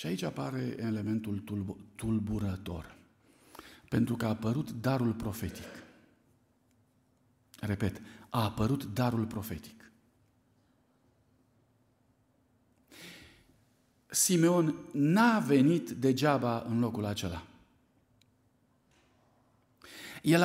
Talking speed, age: 70 wpm, 50-69